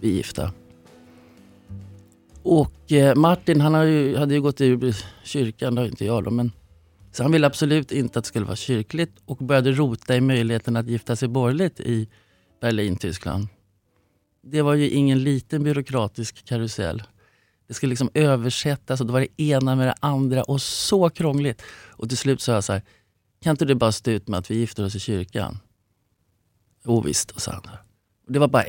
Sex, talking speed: male, 185 wpm